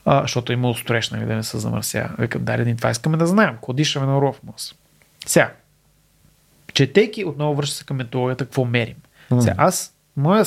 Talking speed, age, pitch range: 160 wpm, 30-49, 130-165 Hz